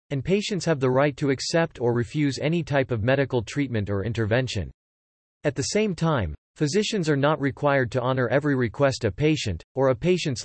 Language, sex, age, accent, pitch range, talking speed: English, male, 40-59, American, 115-150 Hz, 190 wpm